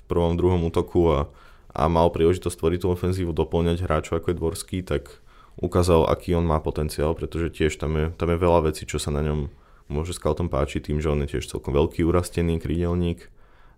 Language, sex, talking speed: Slovak, male, 210 wpm